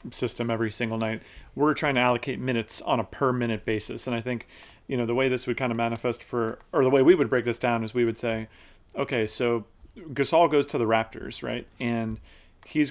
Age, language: 30-49, English